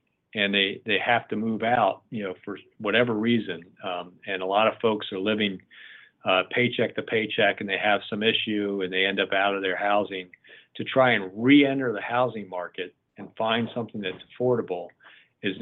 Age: 50-69